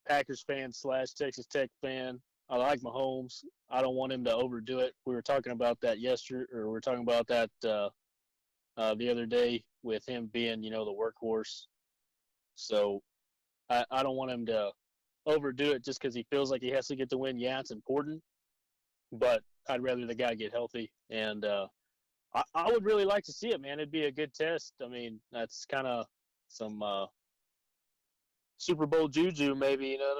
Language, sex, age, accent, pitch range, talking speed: English, male, 30-49, American, 110-135 Hz, 200 wpm